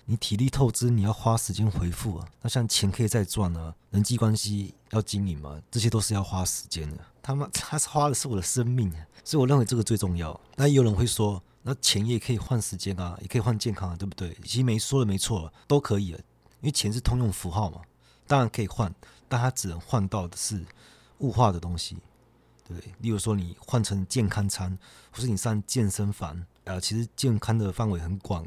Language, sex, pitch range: Chinese, male, 95-120 Hz